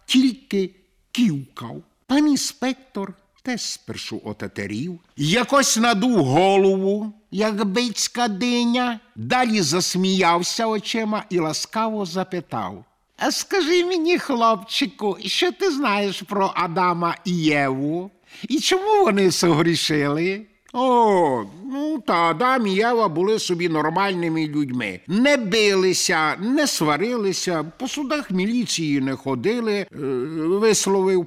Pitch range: 155-245 Hz